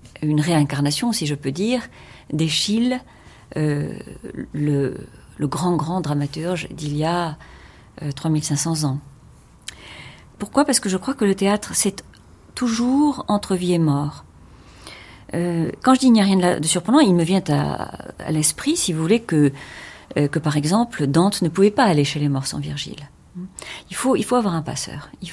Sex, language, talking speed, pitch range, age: female, French, 180 wpm, 150-225 Hz, 40-59